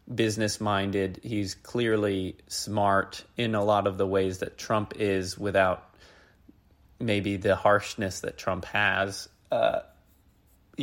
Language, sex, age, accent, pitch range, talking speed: English, male, 30-49, American, 95-115 Hz, 115 wpm